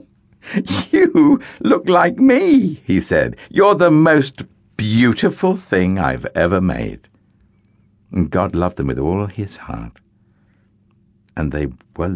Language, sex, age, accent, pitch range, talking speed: English, male, 60-79, British, 95-125 Hz, 125 wpm